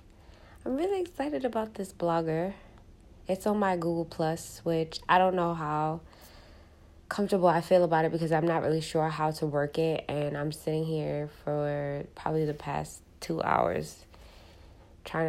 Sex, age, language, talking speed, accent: female, 20-39, English, 160 wpm, American